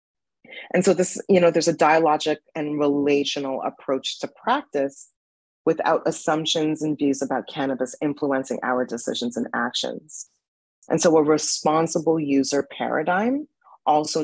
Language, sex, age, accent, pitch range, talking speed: English, female, 30-49, American, 135-170 Hz, 130 wpm